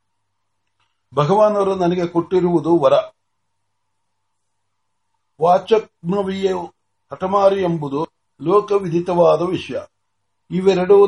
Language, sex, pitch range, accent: Marathi, male, 150-190 Hz, native